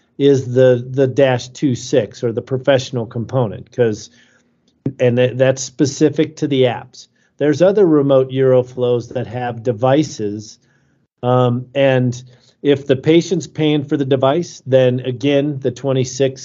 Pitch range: 120-140 Hz